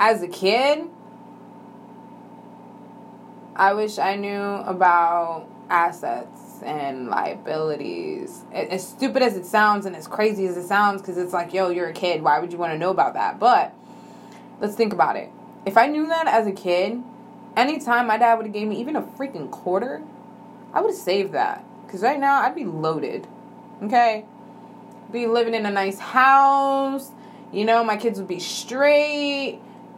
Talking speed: 170 wpm